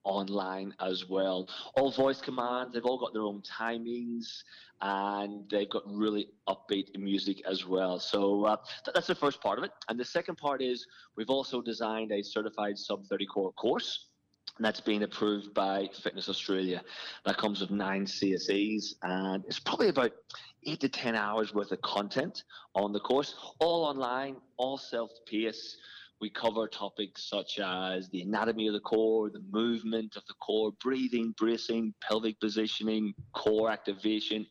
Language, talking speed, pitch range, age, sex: English, 160 wpm, 100-115 Hz, 20-39, male